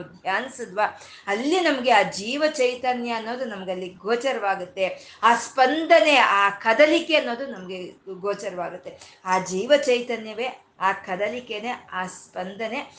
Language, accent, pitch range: Kannada, native, 200-265 Hz